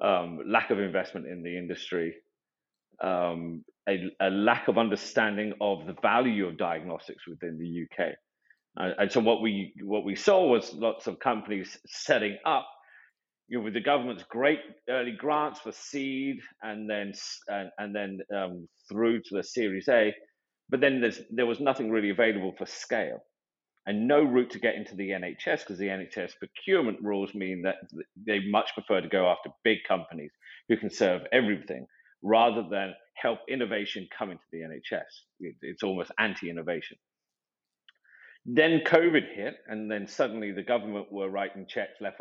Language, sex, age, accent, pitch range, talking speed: English, male, 40-59, British, 95-115 Hz, 165 wpm